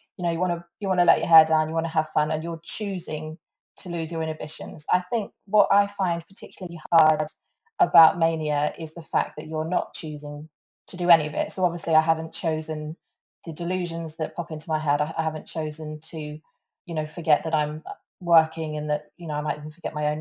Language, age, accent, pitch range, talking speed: English, 30-49, British, 155-195 Hz, 230 wpm